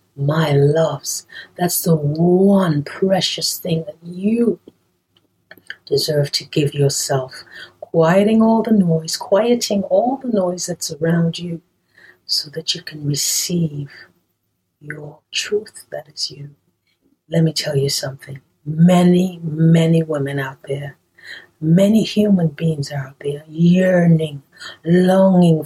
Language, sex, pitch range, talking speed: English, female, 150-190 Hz, 120 wpm